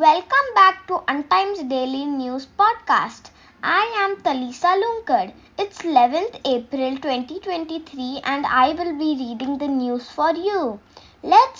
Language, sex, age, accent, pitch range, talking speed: English, female, 20-39, Indian, 265-340 Hz, 130 wpm